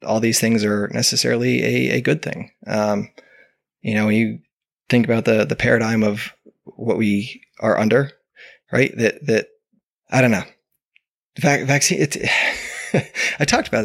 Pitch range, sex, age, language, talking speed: 110-140 Hz, male, 20-39, English, 155 wpm